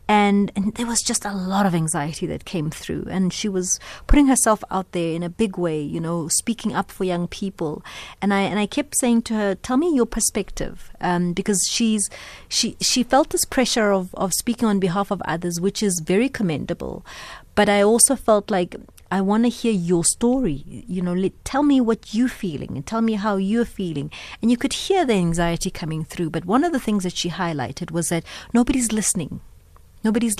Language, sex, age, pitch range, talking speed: English, female, 30-49, 185-230 Hz, 210 wpm